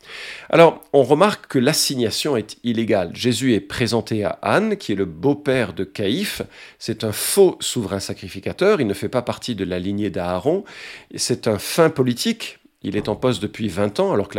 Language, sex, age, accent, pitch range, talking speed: French, male, 50-69, French, 105-150 Hz, 190 wpm